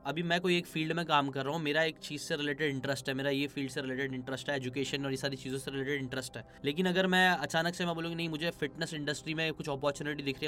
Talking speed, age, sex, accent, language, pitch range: 280 wpm, 10-29, male, native, Hindi, 140-170 Hz